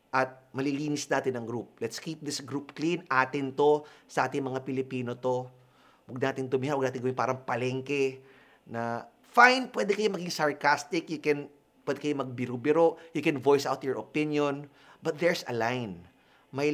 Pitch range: 120-150 Hz